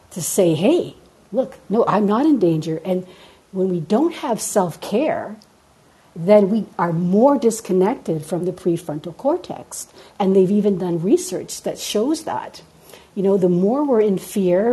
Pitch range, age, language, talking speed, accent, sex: 175-215 Hz, 60-79, English, 160 wpm, American, female